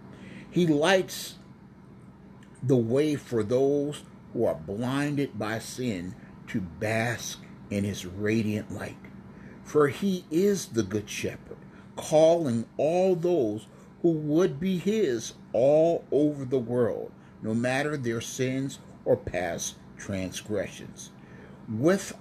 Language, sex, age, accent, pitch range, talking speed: English, male, 50-69, American, 115-175 Hz, 115 wpm